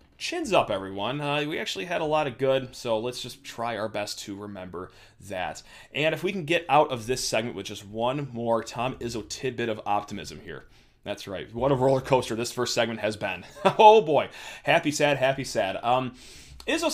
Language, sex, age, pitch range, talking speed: English, male, 30-49, 115-150 Hz, 205 wpm